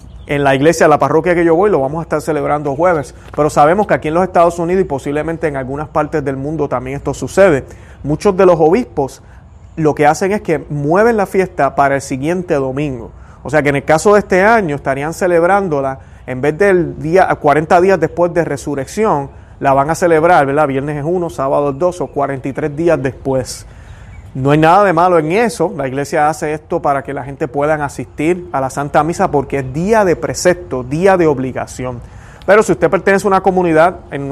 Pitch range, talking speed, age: 135-170 Hz, 210 wpm, 30-49